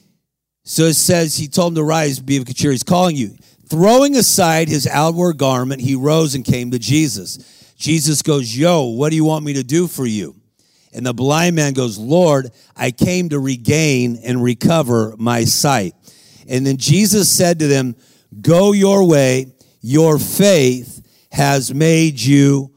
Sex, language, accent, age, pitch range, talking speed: male, English, American, 50-69, 130-170 Hz, 175 wpm